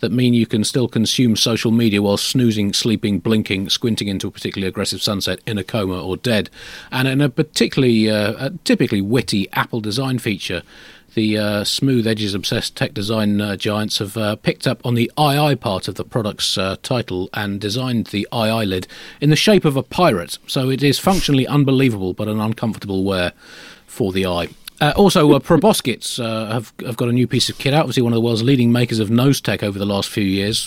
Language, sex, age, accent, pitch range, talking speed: English, male, 40-59, British, 100-125 Hz, 210 wpm